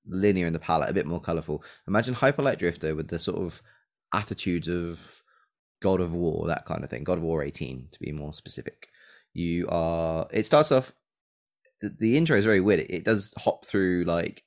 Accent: British